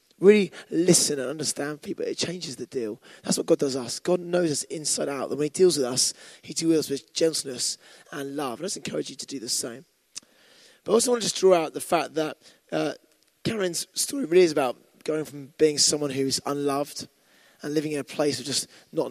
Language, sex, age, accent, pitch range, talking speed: English, male, 20-39, British, 135-155 Hz, 215 wpm